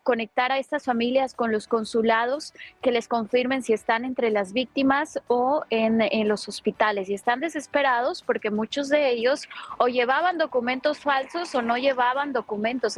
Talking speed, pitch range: 160 wpm, 210-255 Hz